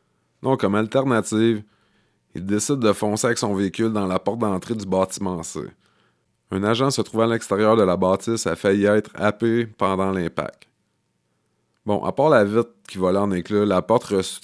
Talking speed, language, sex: 185 wpm, English, male